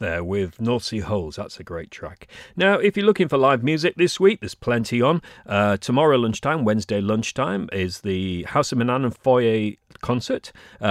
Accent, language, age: British, English, 40-59